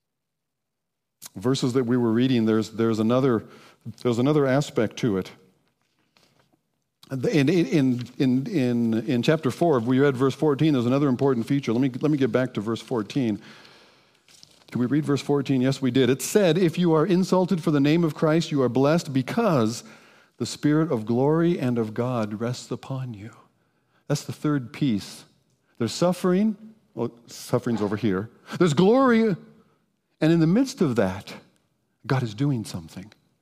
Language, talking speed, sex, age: English, 165 wpm, male, 50-69